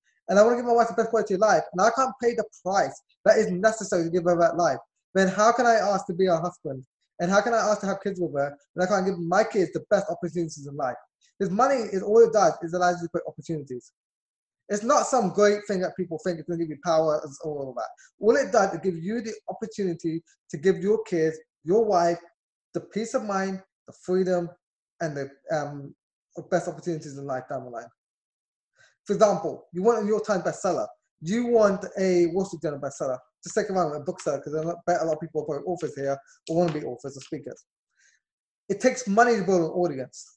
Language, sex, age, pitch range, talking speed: English, male, 20-39, 165-210 Hz, 240 wpm